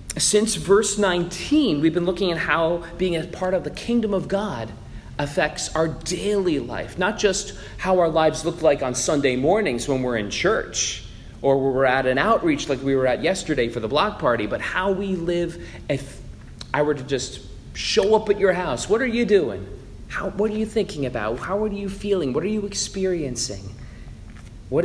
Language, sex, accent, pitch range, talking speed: English, male, American, 135-205 Hz, 195 wpm